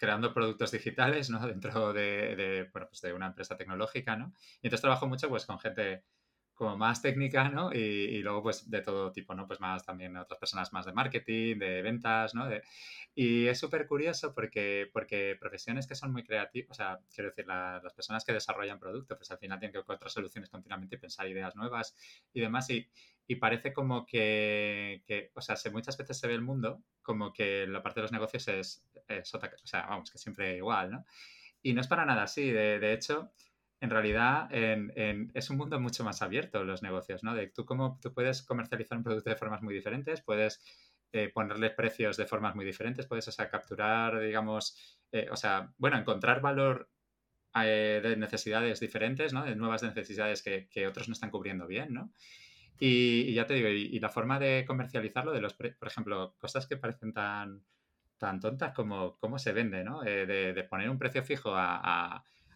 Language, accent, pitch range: Spanish, Spanish, 105-125 Hz